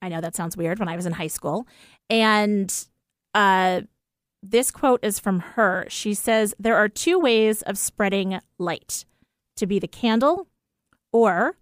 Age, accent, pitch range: 30-49, American, 175-215 Hz